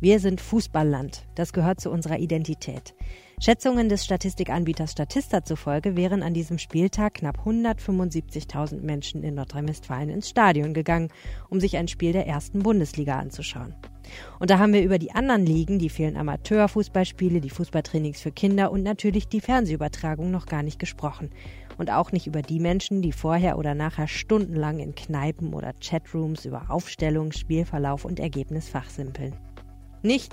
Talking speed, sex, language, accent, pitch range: 155 wpm, female, German, German, 150-195 Hz